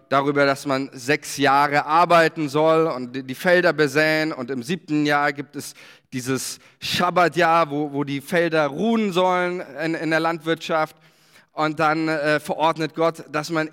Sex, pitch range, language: male, 150-185 Hz, German